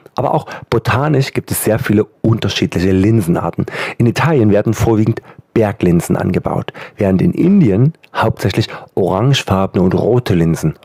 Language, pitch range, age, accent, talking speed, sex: German, 105-135 Hz, 40-59, German, 125 wpm, male